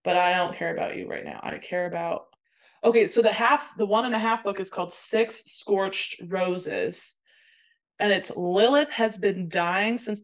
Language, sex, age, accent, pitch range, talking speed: English, female, 20-39, American, 180-220 Hz, 195 wpm